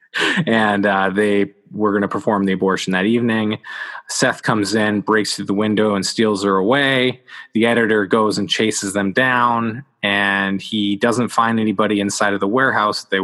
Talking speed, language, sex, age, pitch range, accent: 175 wpm, English, male, 20-39, 100-115 Hz, American